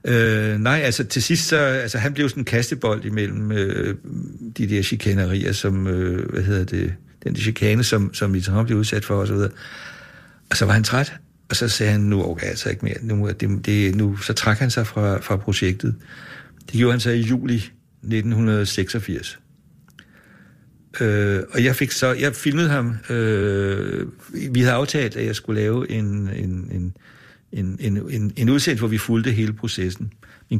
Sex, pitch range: male, 105-125 Hz